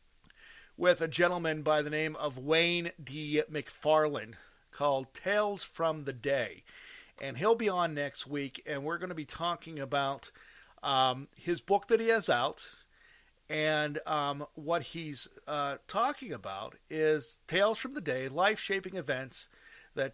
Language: English